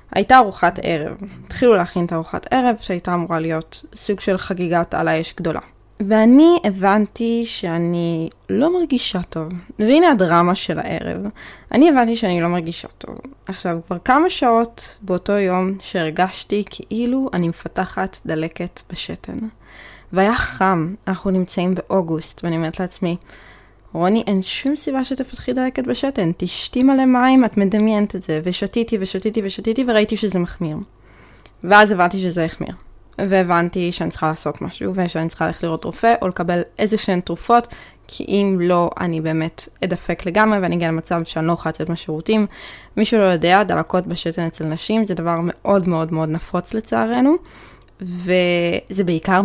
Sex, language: female, Hebrew